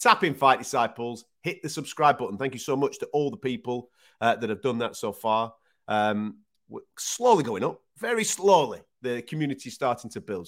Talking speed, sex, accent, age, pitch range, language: 200 wpm, male, British, 30-49, 100-155 Hz, English